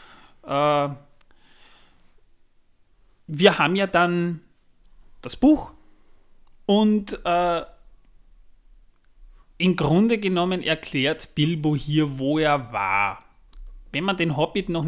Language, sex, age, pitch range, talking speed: German, male, 30-49, 130-165 Hz, 90 wpm